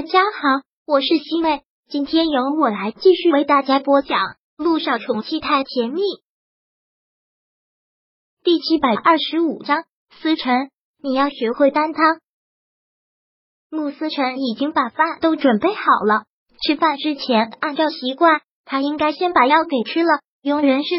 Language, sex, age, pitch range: Chinese, male, 20-39, 260-320 Hz